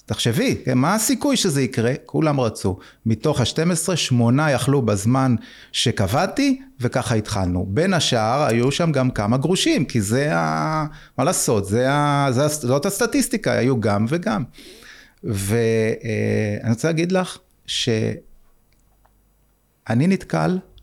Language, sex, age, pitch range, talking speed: Hebrew, male, 30-49, 105-150 Hz, 120 wpm